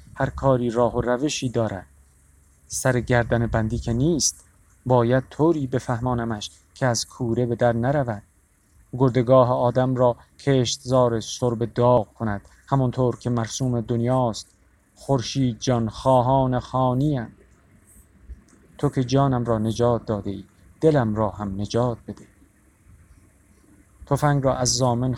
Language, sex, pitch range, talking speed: Persian, male, 100-125 Hz, 125 wpm